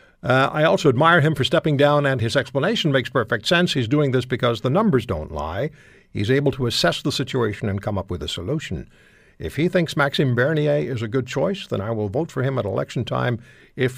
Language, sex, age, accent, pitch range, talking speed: English, male, 60-79, American, 125-175 Hz, 230 wpm